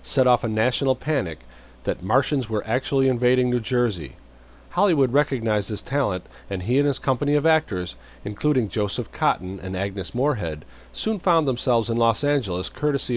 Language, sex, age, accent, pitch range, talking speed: English, male, 40-59, American, 95-130 Hz, 165 wpm